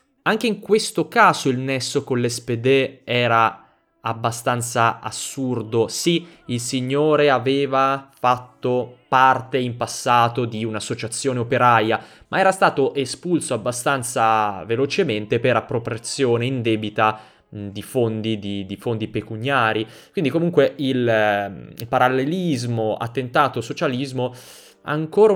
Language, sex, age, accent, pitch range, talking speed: Italian, male, 20-39, native, 115-140 Hz, 100 wpm